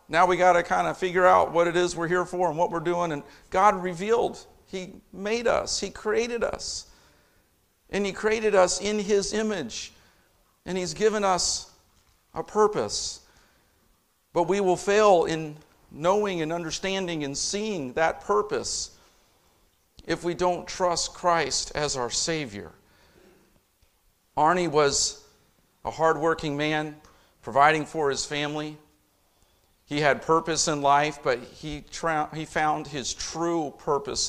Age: 50-69